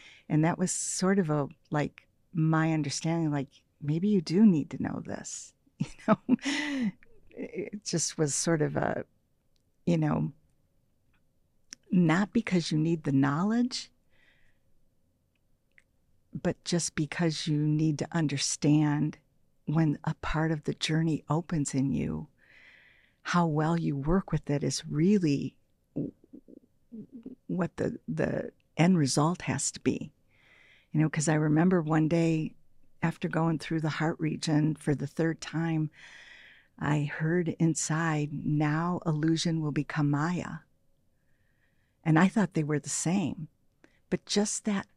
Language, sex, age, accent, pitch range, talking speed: English, female, 50-69, American, 150-180 Hz, 135 wpm